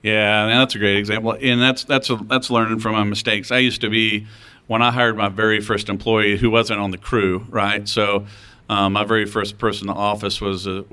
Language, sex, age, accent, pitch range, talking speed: English, male, 40-59, American, 100-110 Hz, 230 wpm